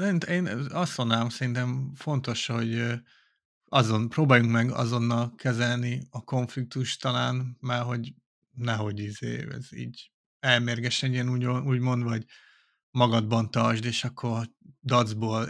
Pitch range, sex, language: 115-125 Hz, male, Hungarian